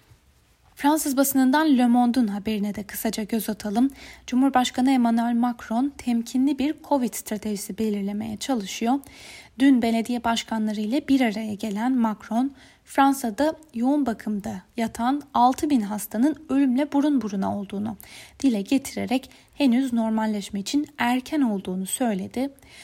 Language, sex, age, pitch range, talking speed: Turkish, female, 10-29, 210-265 Hz, 115 wpm